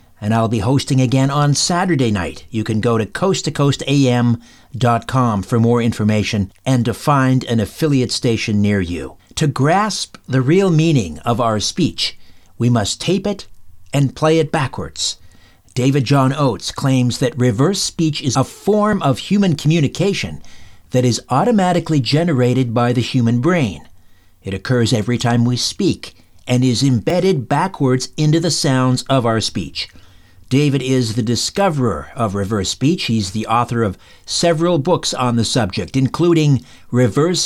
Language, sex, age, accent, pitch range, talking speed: English, male, 50-69, American, 110-150 Hz, 150 wpm